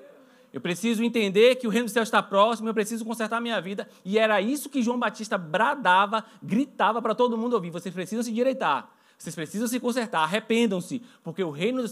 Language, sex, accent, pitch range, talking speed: Portuguese, male, Brazilian, 195-245 Hz, 205 wpm